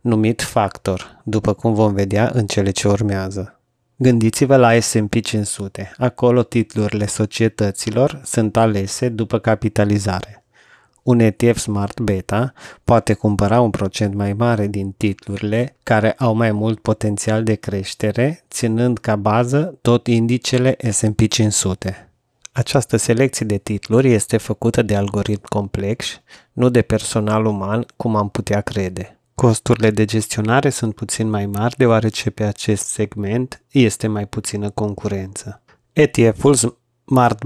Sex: male